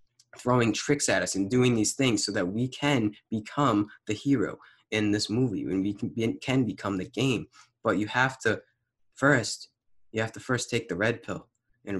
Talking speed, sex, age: 195 wpm, male, 20-39